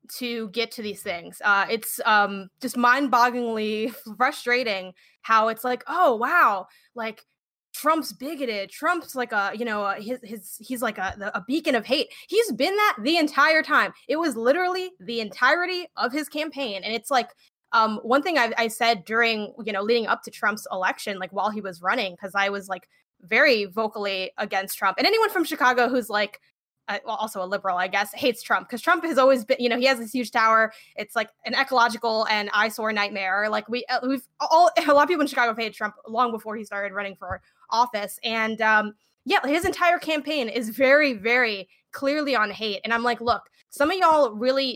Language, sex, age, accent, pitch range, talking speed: English, female, 10-29, American, 215-275 Hz, 200 wpm